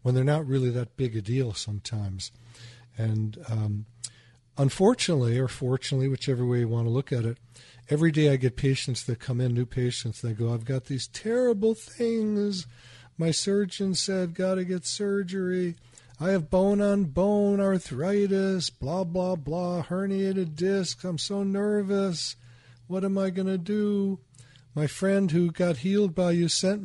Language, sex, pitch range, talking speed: English, male, 120-170 Hz, 160 wpm